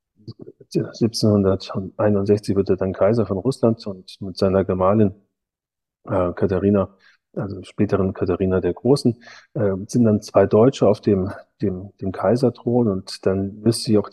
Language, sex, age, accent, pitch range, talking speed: German, male, 30-49, German, 95-115 Hz, 140 wpm